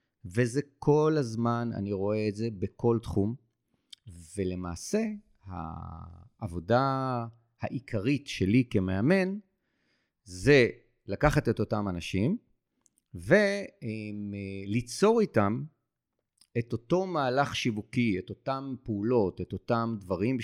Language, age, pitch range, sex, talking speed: Hebrew, 30-49, 95-135 Hz, male, 90 wpm